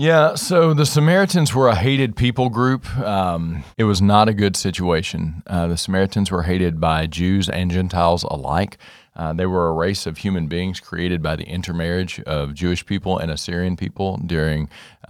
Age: 40-59